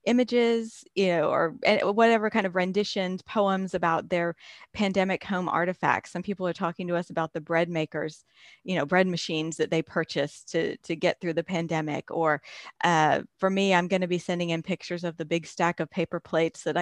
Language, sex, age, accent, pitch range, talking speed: English, female, 30-49, American, 160-190 Hz, 200 wpm